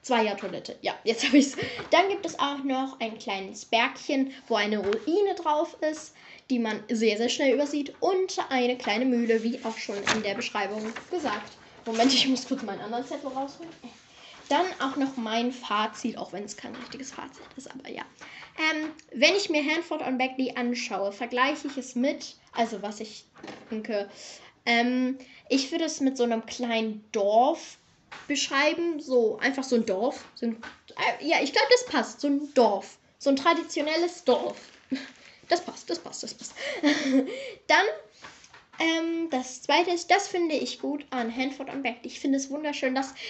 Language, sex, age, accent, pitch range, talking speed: German, female, 10-29, German, 235-295 Hz, 175 wpm